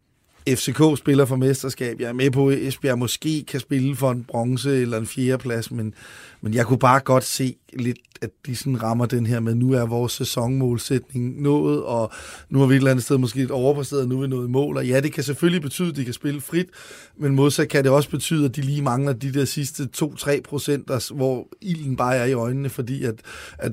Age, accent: 30-49, native